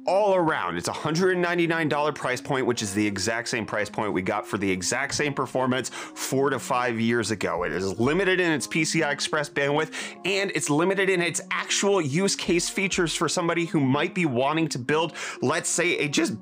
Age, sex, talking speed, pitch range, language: 30-49, male, 195 wpm, 125-180 Hz, English